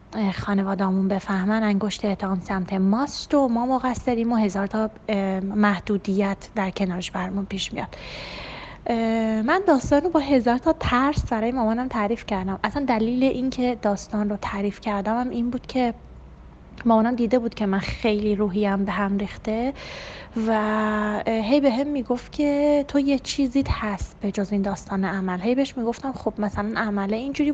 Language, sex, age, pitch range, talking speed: Persian, female, 20-39, 210-255 Hz, 160 wpm